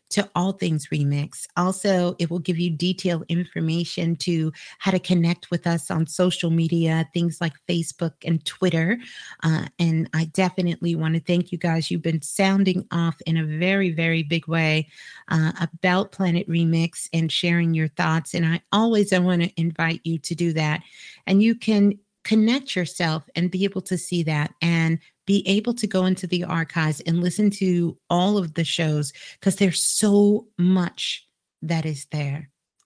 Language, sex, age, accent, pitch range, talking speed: English, female, 40-59, American, 165-195 Hz, 175 wpm